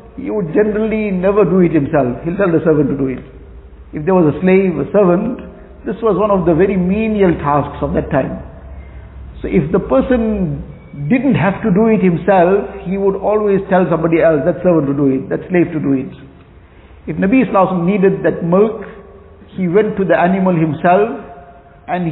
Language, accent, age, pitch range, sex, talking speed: English, Indian, 50-69, 140-200 Hz, male, 195 wpm